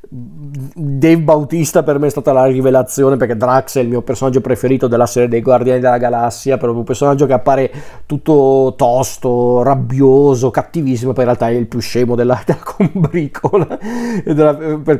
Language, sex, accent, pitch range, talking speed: Italian, male, native, 125-145 Hz, 165 wpm